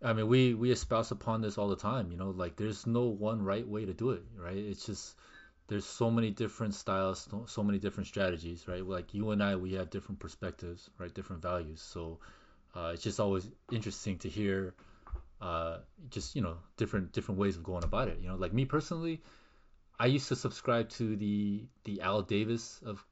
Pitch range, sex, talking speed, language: 90-115 Hz, male, 210 wpm, English